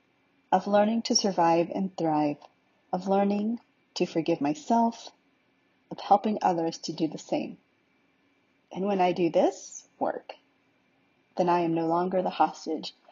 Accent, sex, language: American, female, English